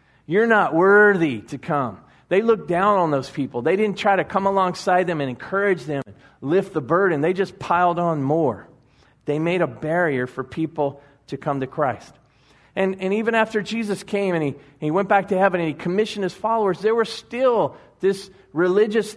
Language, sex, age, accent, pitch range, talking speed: English, male, 40-59, American, 150-200 Hz, 195 wpm